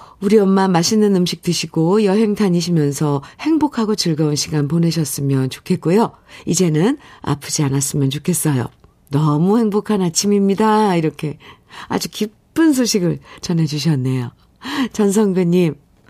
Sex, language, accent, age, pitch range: female, Korean, native, 50-69, 145-210 Hz